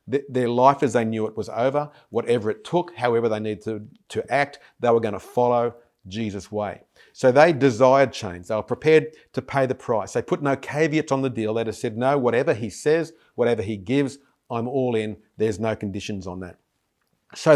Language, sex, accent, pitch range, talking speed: English, male, Australian, 110-140 Hz, 210 wpm